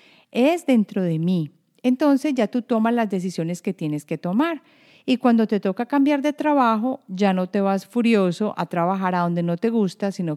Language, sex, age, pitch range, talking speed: Spanish, female, 40-59, 185-245 Hz, 195 wpm